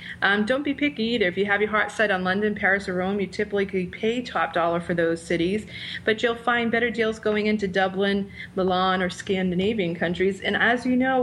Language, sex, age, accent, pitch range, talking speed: English, female, 30-49, American, 180-215 Hz, 220 wpm